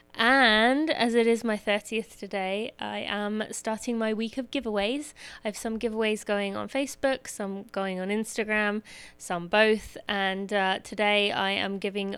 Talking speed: 165 wpm